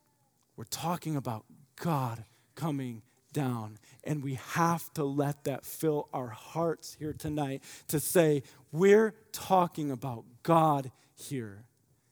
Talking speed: 120 wpm